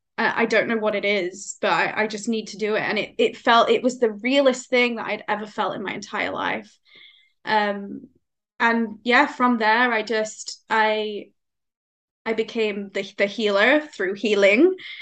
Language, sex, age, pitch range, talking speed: English, female, 10-29, 205-240 Hz, 185 wpm